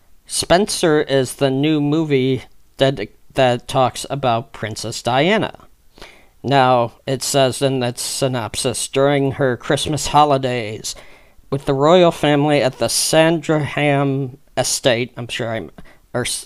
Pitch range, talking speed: 120-145 Hz, 120 wpm